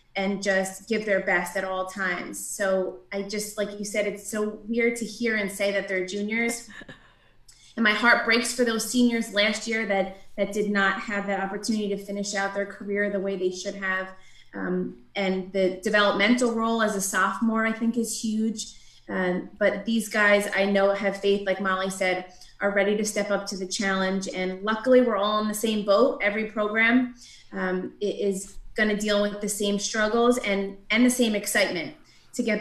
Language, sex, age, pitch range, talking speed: English, female, 20-39, 190-215 Hz, 200 wpm